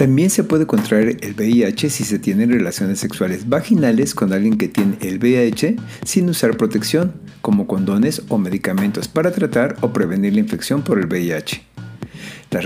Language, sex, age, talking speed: Spanish, male, 50-69, 165 wpm